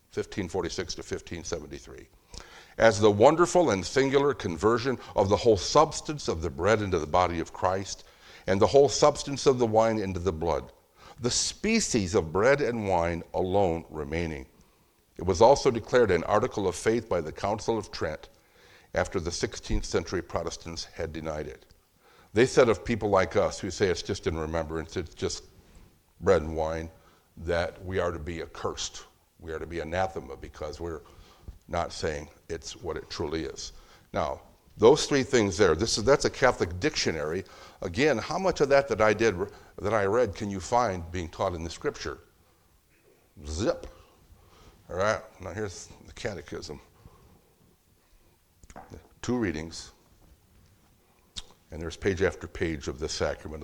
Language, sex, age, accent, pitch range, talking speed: English, male, 60-79, American, 80-105 Hz, 160 wpm